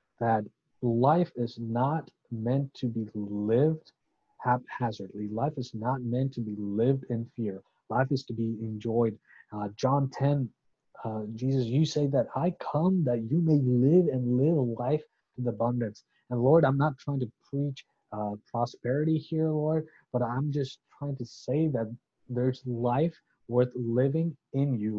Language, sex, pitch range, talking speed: English, male, 110-135 Hz, 160 wpm